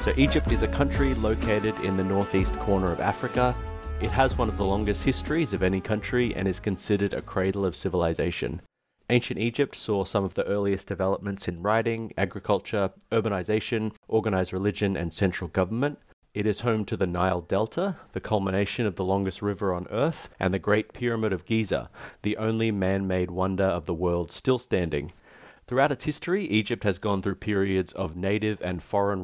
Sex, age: male, 30-49